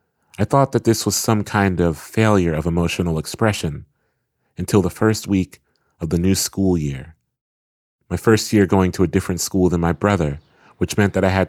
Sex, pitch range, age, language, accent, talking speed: male, 85-105 Hz, 30-49, English, American, 195 wpm